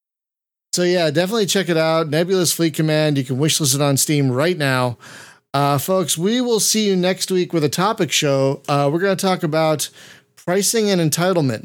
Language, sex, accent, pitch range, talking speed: English, male, American, 135-170 Hz, 195 wpm